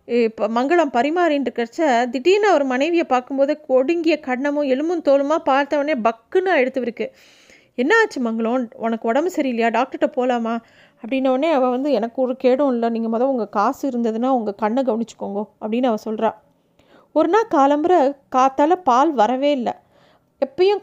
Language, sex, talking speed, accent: Tamil, female, 140 wpm, native